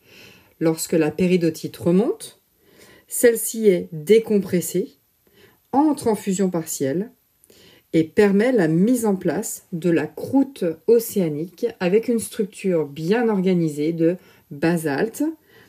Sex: female